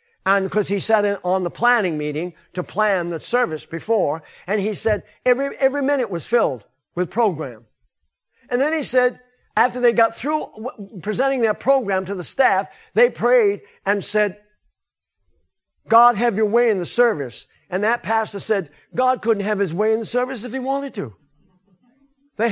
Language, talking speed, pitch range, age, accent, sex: English, 175 wpm, 170-230 Hz, 50-69, American, male